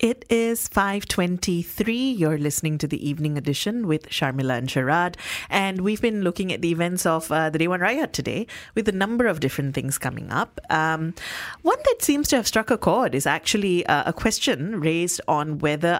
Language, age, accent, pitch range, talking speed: English, 30-49, Indian, 150-205 Hz, 195 wpm